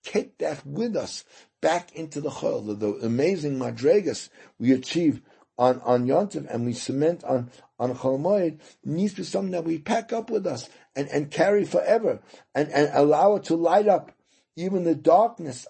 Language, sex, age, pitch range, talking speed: English, male, 60-79, 115-150 Hz, 175 wpm